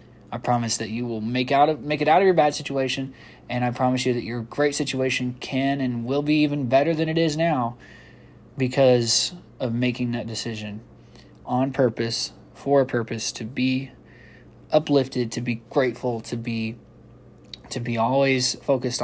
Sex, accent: male, American